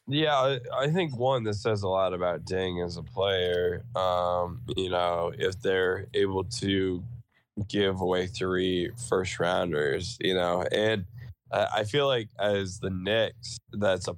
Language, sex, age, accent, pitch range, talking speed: English, male, 10-29, American, 90-110 Hz, 150 wpm